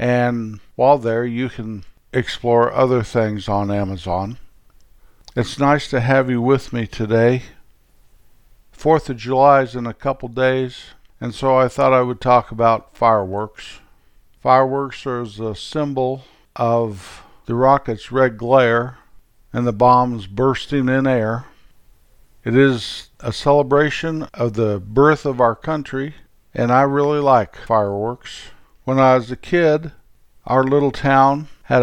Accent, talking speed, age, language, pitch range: American, 140 wpm, 50-69, English, 115-135 Hz